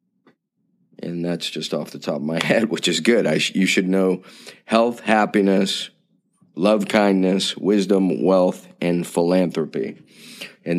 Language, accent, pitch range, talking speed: English, American, 90-105 Hz, 135 wpm